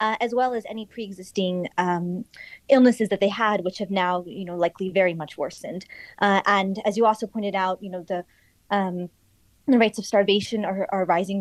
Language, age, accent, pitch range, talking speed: English, 20-39, American, 185-225 Hz, 200 wpm